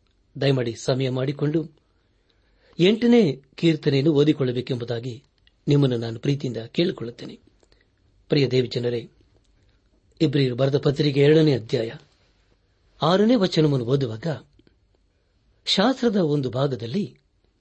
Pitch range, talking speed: 115-155 Hz, 80 wpm